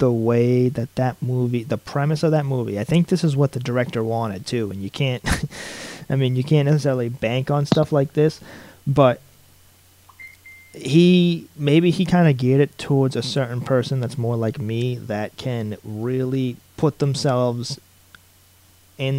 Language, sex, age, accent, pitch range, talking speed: English, male, 30-49, American, 115-140 Hz, 170 wpm